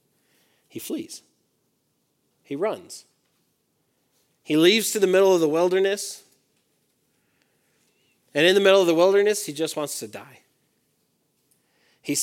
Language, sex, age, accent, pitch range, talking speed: English, male, 40-59, American, 135-180 Hz, 125 wpm